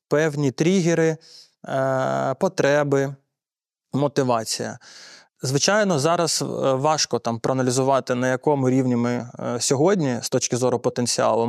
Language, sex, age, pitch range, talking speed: Ukrainian, male, 20-39, 120-150 Hz, 95 wpm